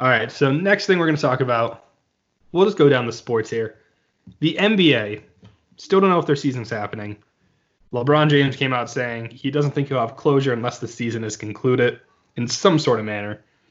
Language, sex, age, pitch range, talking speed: English, male, 20-39, 115-145 Hz, 205 wpm